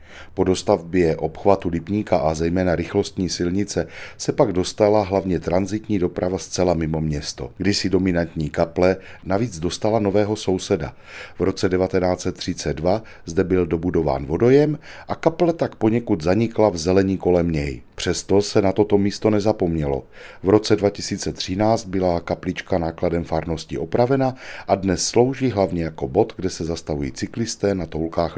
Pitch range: 85-105 Hz